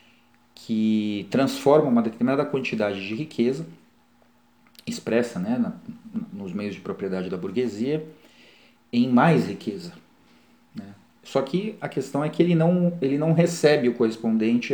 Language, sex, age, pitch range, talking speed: Portuguese, male, 40-59, 110-155 Hz, 135 wpm